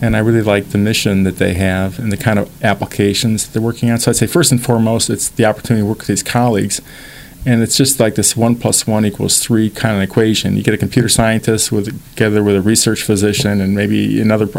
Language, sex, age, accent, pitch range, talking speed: English, male, 40-59, American, 100-120 Hz, 245 wpm